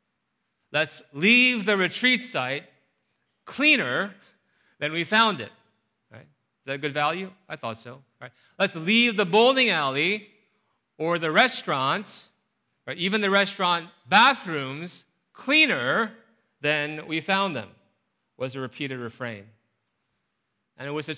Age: 40-59